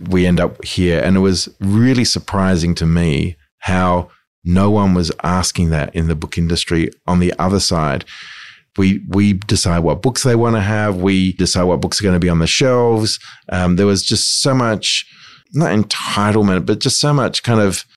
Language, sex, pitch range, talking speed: English, male, 90-110 Hz, 195 wpm